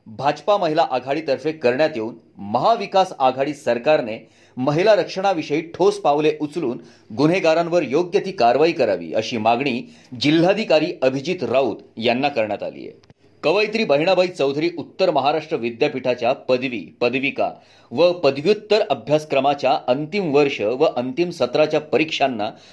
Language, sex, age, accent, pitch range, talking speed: Marathi, male, 30-49, native, 135-180 Hz, 120 wpm